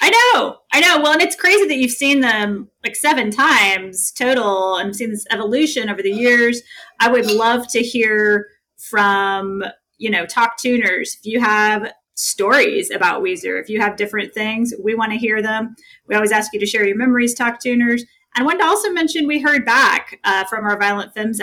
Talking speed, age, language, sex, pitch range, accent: 200 wpm, 30-49, English, female, 210-265 Hz, American